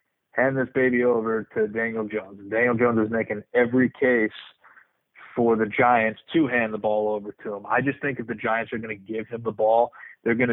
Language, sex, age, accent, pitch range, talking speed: English, male, 20-39, American, 105-115 Hz, 220 wpm